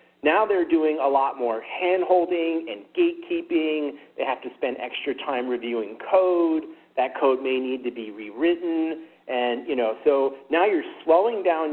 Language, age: English, 40-59